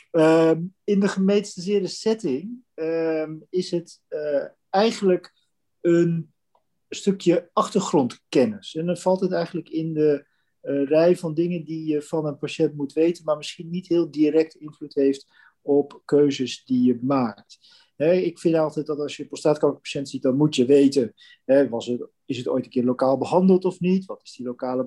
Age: 40-59